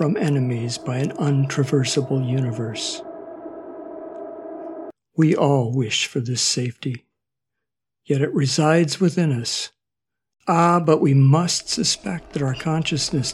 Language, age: English, 60-79